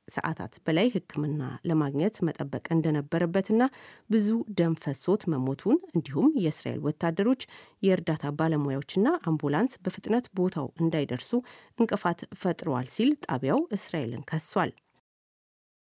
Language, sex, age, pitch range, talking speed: Amharic, female, 30-49, 145-200 Hz, 95 wpm